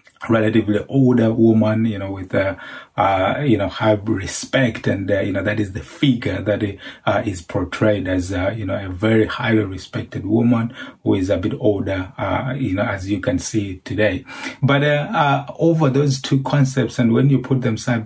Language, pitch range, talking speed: English, 105-125 Hz, 195 wpm